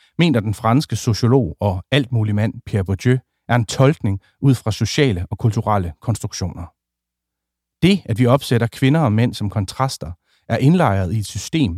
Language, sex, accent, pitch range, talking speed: Danish, male, native, 95-130 Hz, 170 wpm